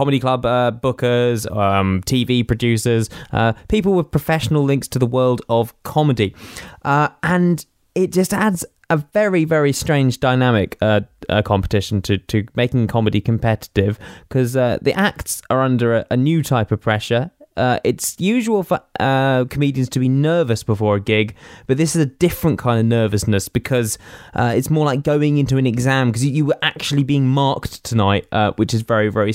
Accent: British